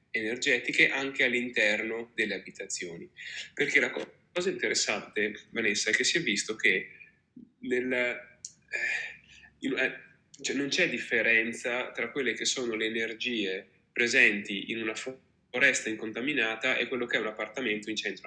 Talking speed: 125 wpm